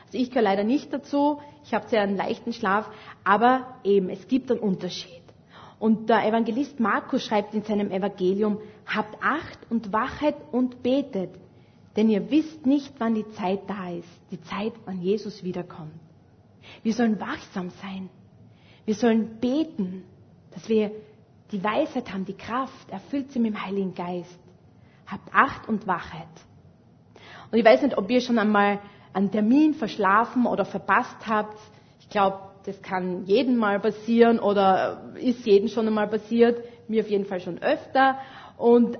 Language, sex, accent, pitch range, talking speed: German, female, Austrian, 190-240 Hz, 160 wpm